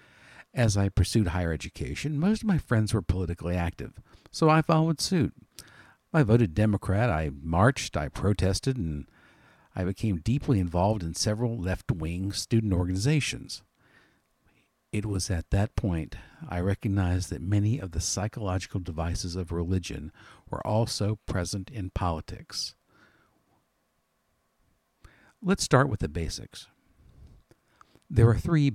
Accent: American